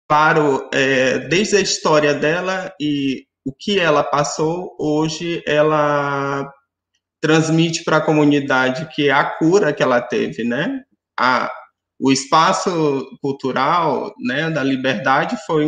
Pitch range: 130-160 Hz